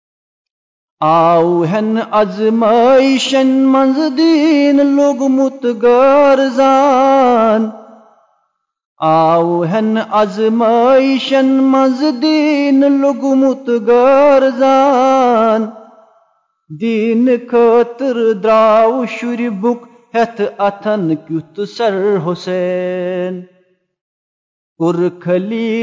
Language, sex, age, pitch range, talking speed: Urdu, male, 40-59, 205-265 Hz, 50 wpm